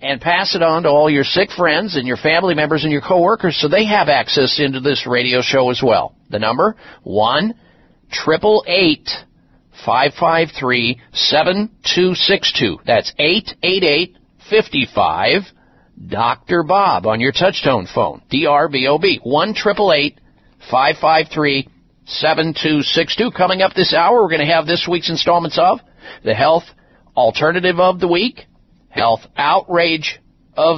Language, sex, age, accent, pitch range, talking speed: English, male, 50-69, American, 150-190 Hz, 115 wpm